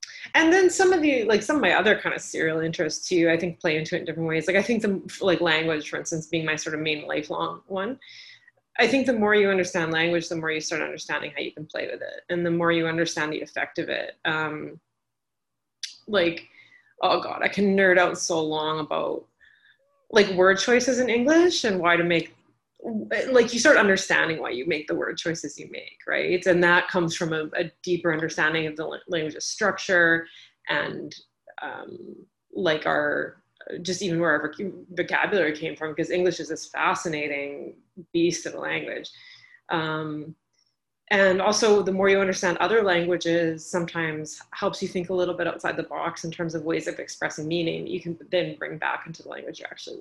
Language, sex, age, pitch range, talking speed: English, female, 30-49, 165-200 Hz, 200 wpm